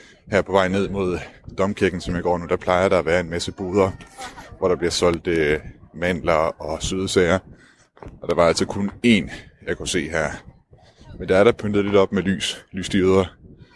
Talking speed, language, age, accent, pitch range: 195 wpm, Danish, 20-39, native, 85-100 Hz